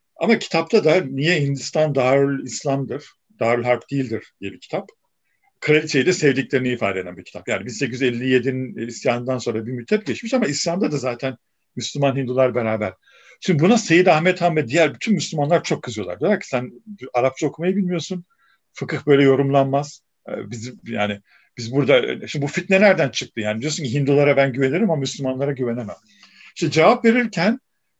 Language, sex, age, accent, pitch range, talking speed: Turkish, male, 50-69, native, 125-170 Hz, 160 wpm